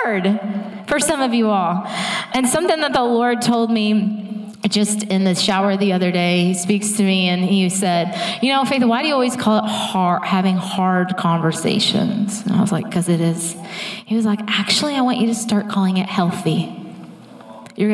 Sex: female